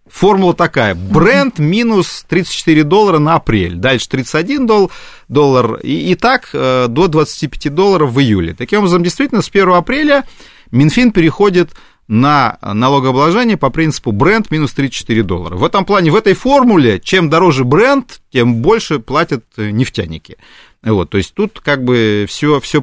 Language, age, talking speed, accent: Russian, 30-49, 140 wpm, native